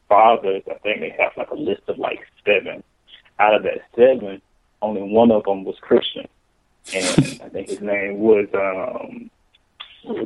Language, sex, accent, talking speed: English, male, American, 170 wpm